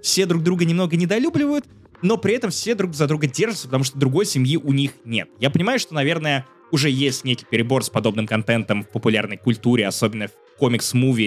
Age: 20-39